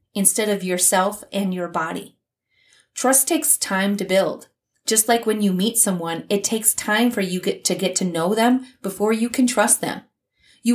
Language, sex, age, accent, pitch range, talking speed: English, female, 30-49, American, 175-230 Hz, 185 wpm